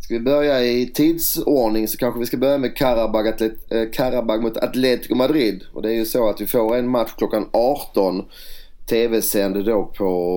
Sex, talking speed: male, 180 wpm